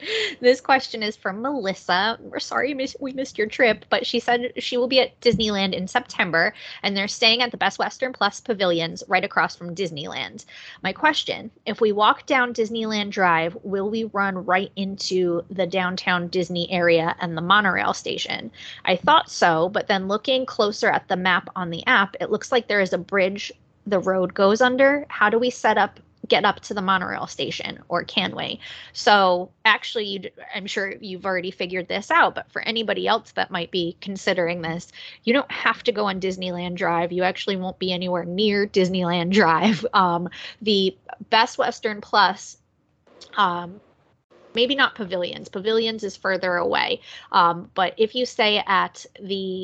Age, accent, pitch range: 20-39, American, 185-225 Hz